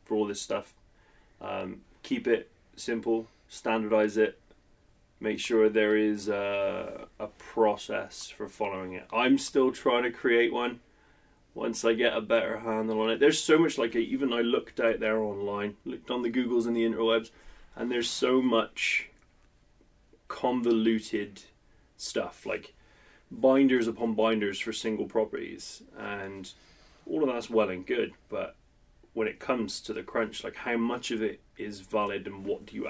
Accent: British